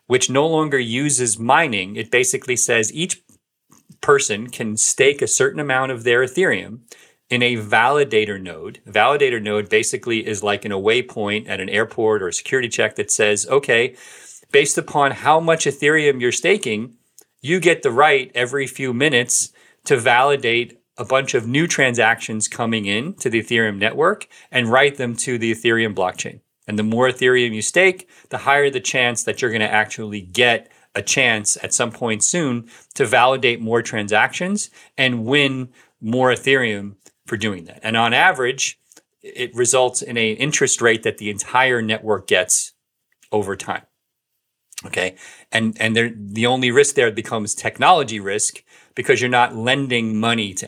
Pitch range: 110-140 Hz